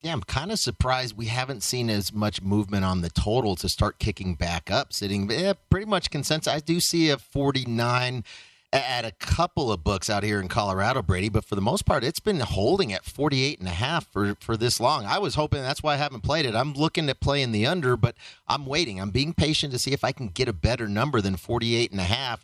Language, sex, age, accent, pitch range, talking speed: English, male, 40-59, American, 110-135 Hz, 225 wpm